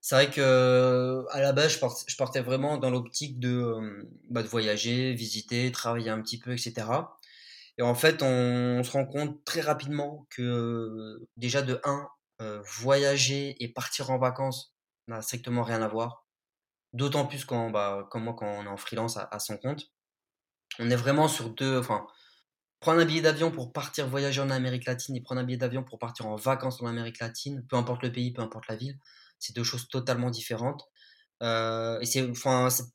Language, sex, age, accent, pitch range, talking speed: French, male, 20-39, French, 115-135 Hz, 200 wpm